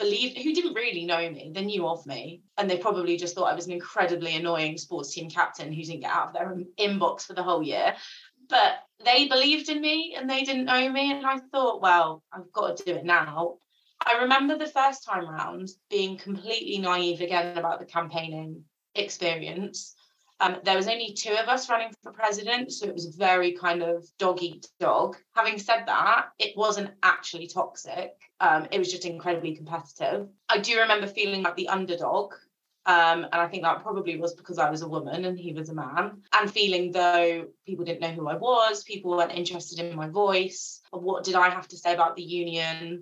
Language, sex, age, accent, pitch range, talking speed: English, female, 20-39, British, 170-215 Hz, 205 wpm